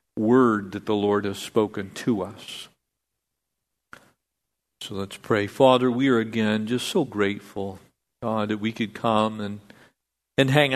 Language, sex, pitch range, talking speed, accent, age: English, male, 100-125 Hz, 145 wpm, American, 50-69